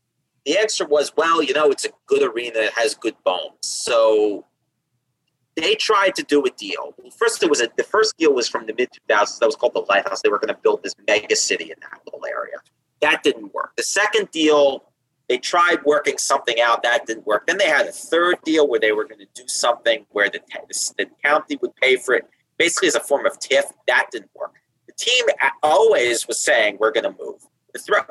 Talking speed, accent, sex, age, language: 225 wpm, American, male, 30-49, English